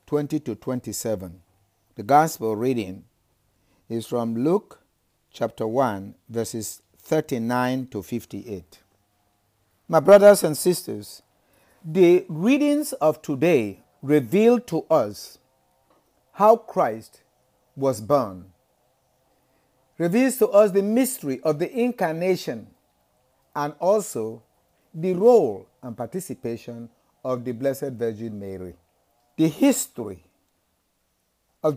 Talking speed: 100 wpm